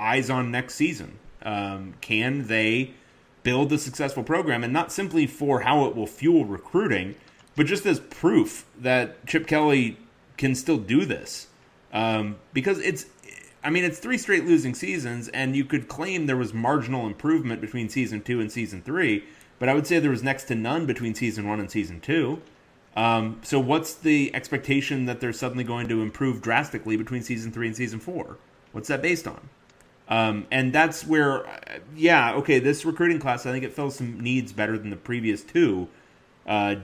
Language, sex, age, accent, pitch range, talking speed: English, male, 30-49, American, 110-145 Hz, 185 wpm